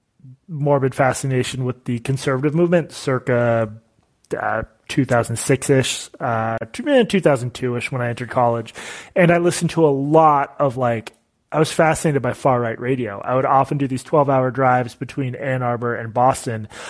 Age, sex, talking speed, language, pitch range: 30-49, male, 140 wpm, English, 120-145 Hz